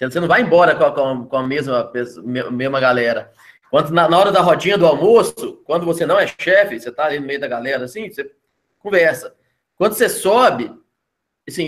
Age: 20-39